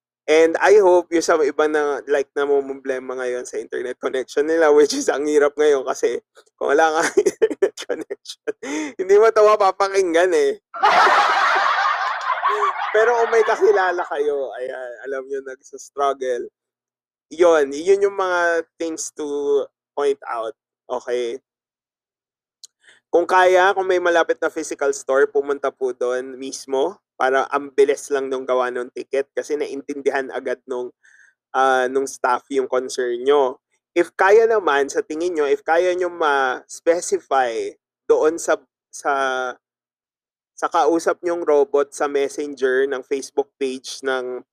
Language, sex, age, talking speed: Filipino, male, 20-39, 135 wpm